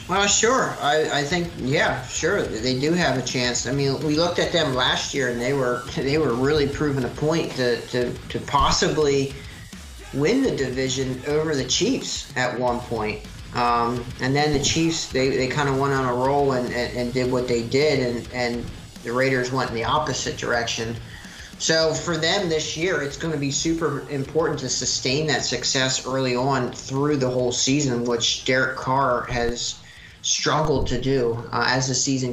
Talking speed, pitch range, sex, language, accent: 195 wpm, 120-140 Hz, male, English, American